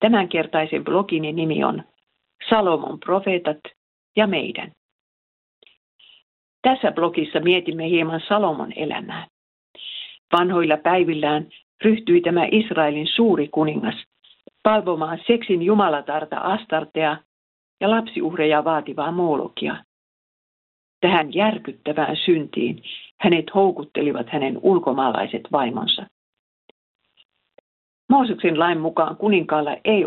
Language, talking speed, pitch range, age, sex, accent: Finnish, 85 wpm, 155-200 Hz, 50-69, female, native